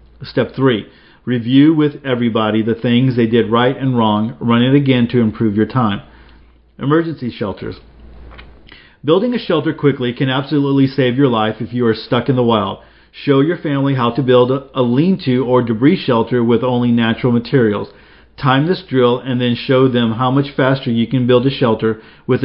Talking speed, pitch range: 185 wpm, 115-140 Hz